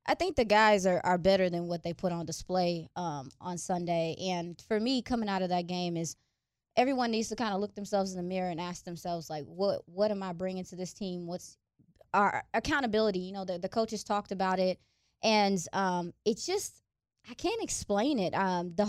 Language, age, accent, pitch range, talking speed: English, 20-39, American, 175-210 Hz, 220 wpm